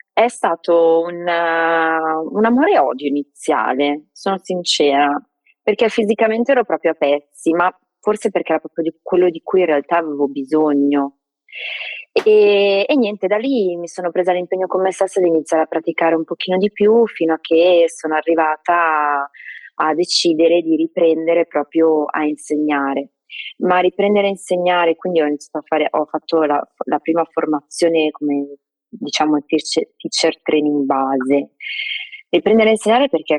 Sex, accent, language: female, native, Italian